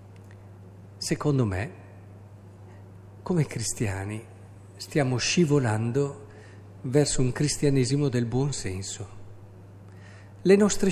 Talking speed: 75 wpm